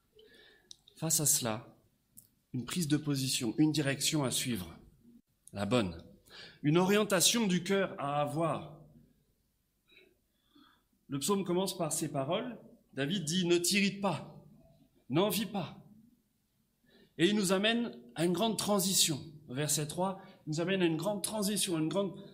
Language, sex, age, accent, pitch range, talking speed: French, male, 30-49, French, 120-180 Hz, 145 wpm